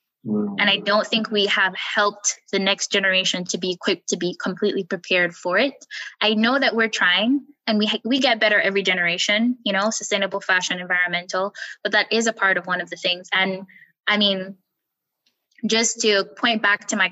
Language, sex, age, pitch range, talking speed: English, female, 10-29, 190-220 Hz, 195 wpm